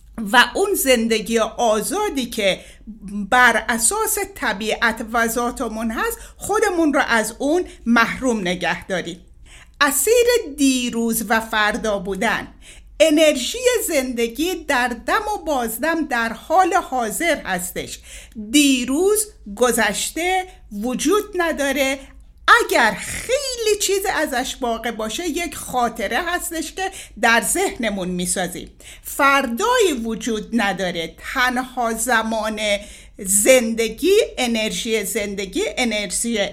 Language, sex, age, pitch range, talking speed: Persian, female, 50-69, 215-305 Hz, 95 wpm